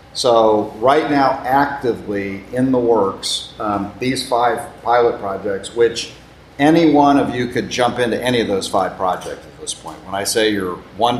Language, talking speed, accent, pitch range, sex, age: English, 175 wpm, American, 100-130 Hz, male, 40-59